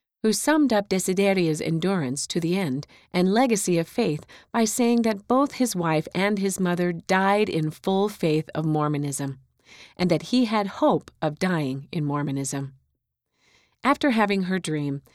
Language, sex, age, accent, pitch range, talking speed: English, female, 40-59, American, 155-215 Hz, 160 wpm